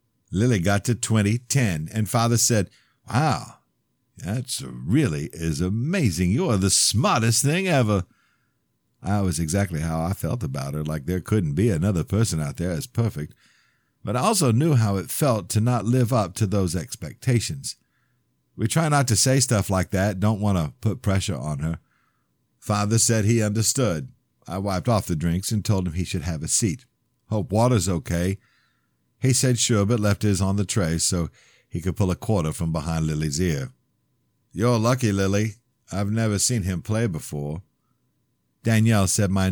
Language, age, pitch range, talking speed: English, 50-69, 90-120 Hz, 175 wpm